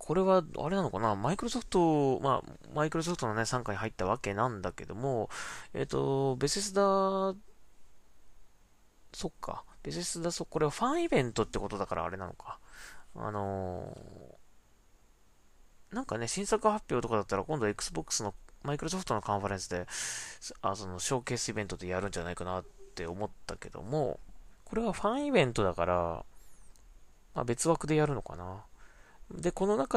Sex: male